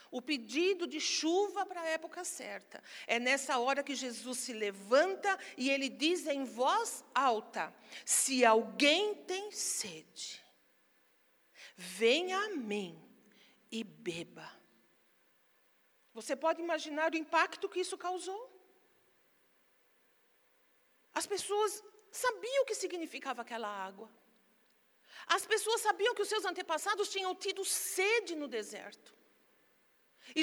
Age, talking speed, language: 50-69, 115 wpm, Portuguese